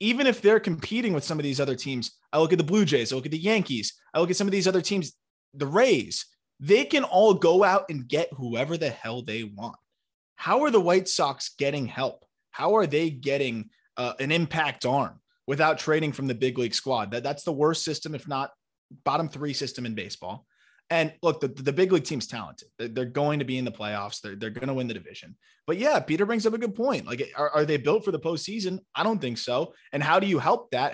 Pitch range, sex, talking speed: 130-170 Hz, male, 240 wpm